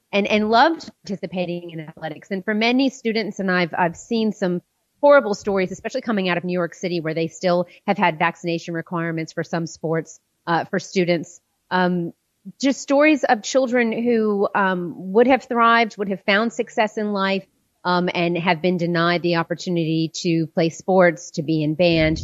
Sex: female